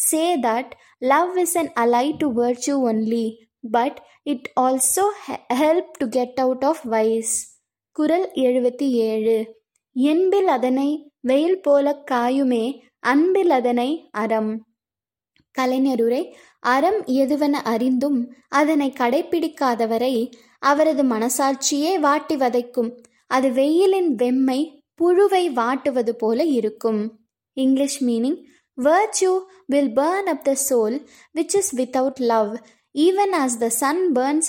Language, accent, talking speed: Tamil, native, 125 wpm